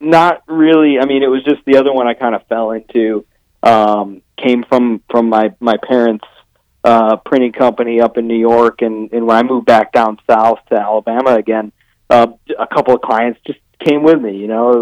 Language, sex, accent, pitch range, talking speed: English, male, American, 115-140 Hz, 210 wpm